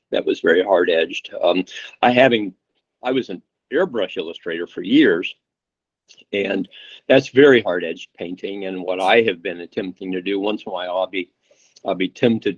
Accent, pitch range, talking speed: American, 90-105 Hz, 180 wpm